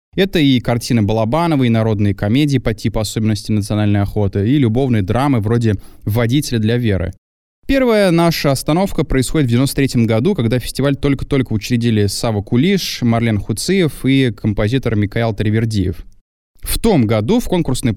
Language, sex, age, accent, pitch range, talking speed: Russian, male, 20-39, native, 110-140 Hz, 145 wpm